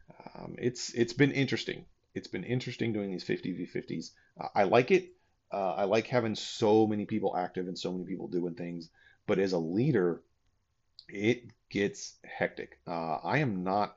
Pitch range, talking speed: 90-110 Hz, 170 wpm